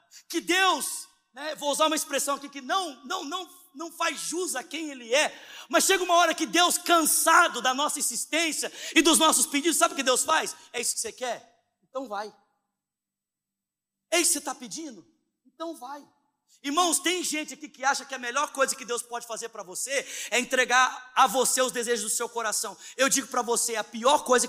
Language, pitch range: Portuguese, 250-350 Hz